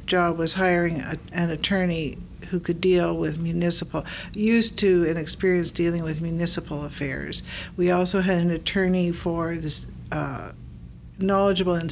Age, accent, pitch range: 60-79, American, 160-190 Hz